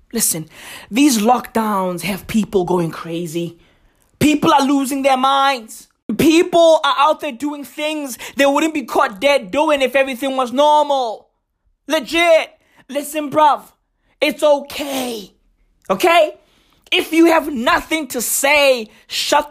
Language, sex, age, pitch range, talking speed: English, male, 20-39, 245-320 Hz, 125 wpm